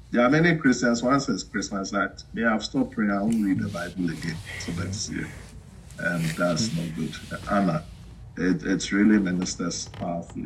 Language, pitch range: English, 90-120 Hz